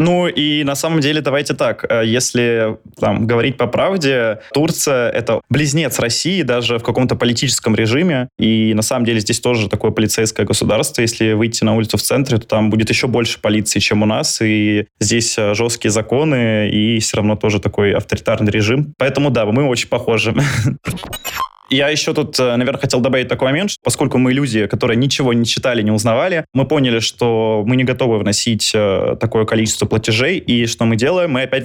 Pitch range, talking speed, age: 110-130 Hz, 180 wpm, 20-39